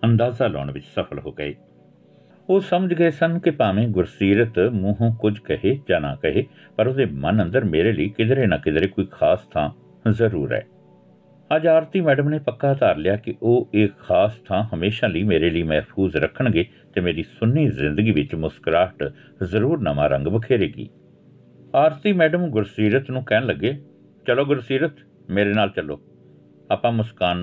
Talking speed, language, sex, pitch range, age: 160 wpm, Punjabi, male, 90-130 Hz, 60-79